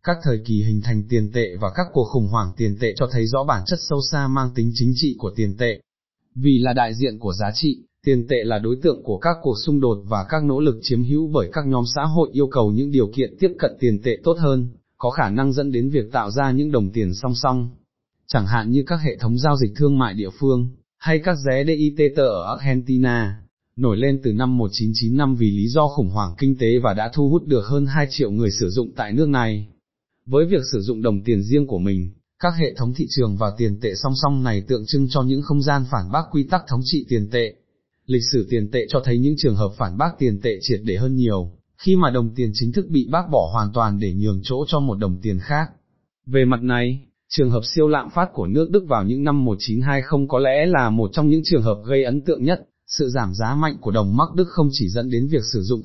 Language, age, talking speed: Vietnamese, 20-39, 255 wpm